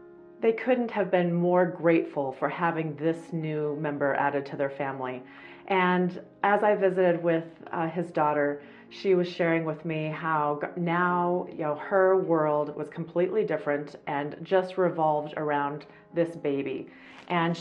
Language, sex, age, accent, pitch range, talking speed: English, female, 30-49, American, 155-190 Hz, 150 wpm